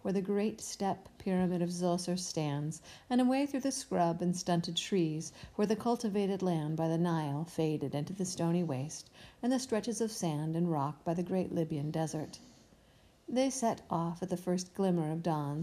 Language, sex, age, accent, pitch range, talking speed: English, female, 50-69, American, 165-200 Hz, 190 wpm